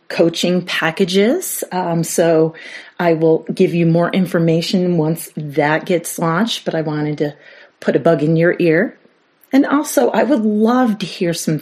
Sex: female